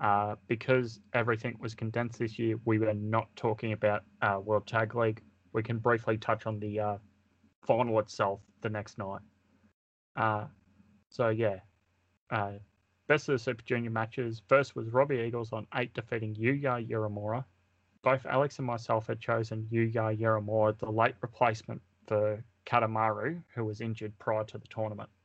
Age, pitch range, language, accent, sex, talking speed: 20-39, 105-120 Hz, English, Australian, male, 160 wpm